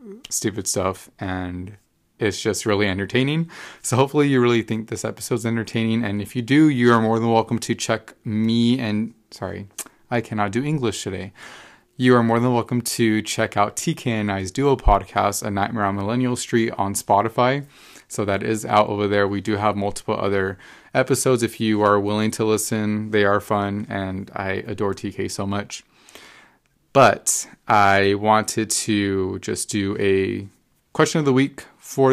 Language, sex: English, male